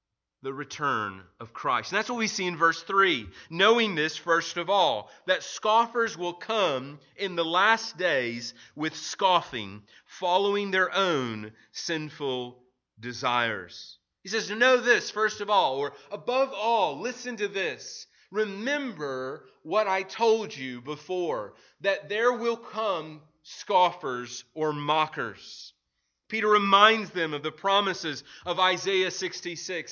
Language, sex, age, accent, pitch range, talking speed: English, male, 30-49, American, 140-205 Hz, 135 wpm